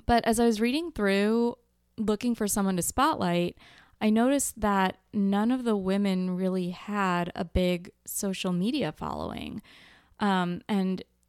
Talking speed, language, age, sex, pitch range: 145 wpm, English, 20-39, female, 180-215 Hz